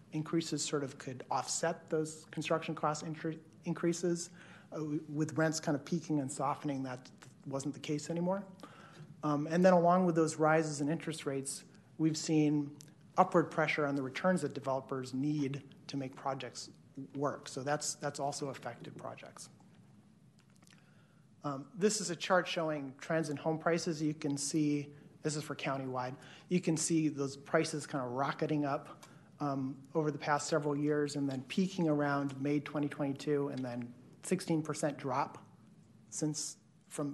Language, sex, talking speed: English, male, 160 wpm